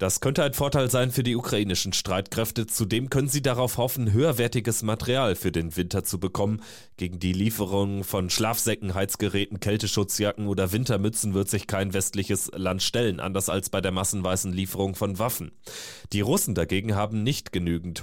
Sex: male